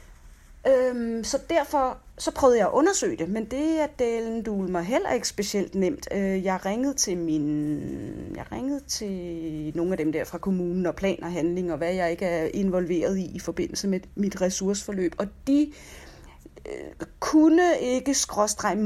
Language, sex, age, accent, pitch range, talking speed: Danish, female, 30-49, native, 175-230 Hz, 175 wpm